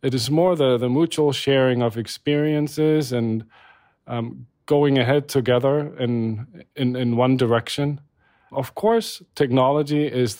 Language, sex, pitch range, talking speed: English, male, 120-145 Hz, 135 wpm